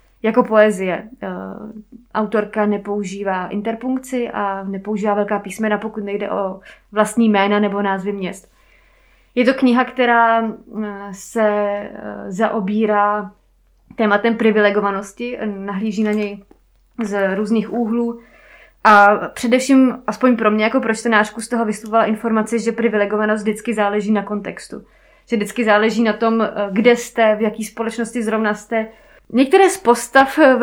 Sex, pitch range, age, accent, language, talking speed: female, 210-245 Hz, 20-39, native, Czech, 125 wpm